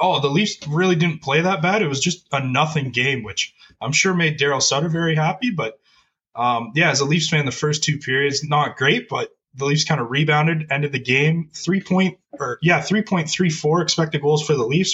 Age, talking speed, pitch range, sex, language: 20-39, 215 wpm, 135-170 Hz, male, English